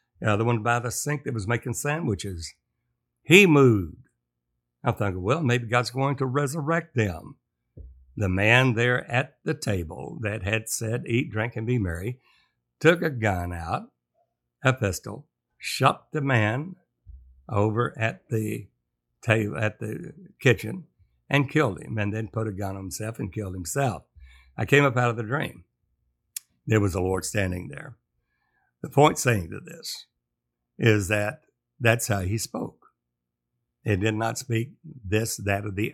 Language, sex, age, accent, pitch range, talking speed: English, male, 60-79, American, 95-125 Hz, 160 wpm